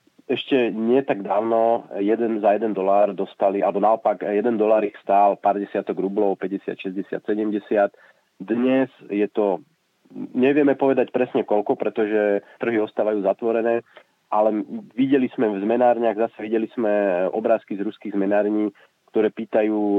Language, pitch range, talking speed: Slovak, 100-115 Hz, 140 wpm